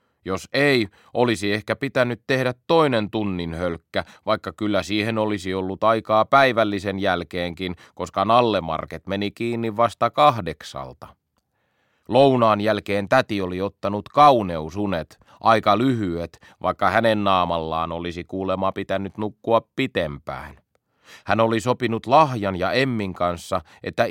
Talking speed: 115 wpm